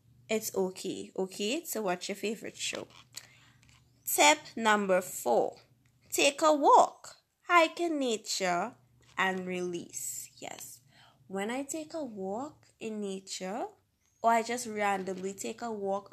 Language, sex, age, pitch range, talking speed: English, female, 20-39, 190-240 Hz, 125 wpm